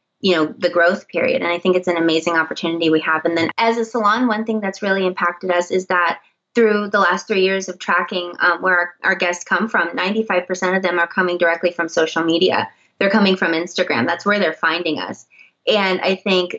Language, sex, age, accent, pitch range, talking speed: English, female, 20-39, American, 175-200 Hz, 225 wpm